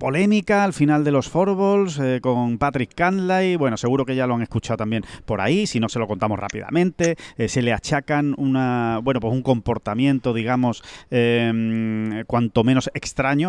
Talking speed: 180 wpm